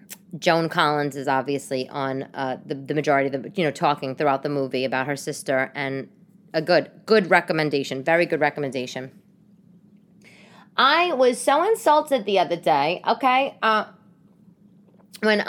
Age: 20-39